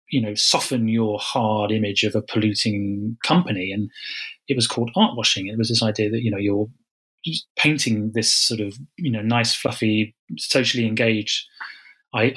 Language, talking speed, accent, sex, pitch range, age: English, 170 wpm, British, male, 110-135 Hz, 30-49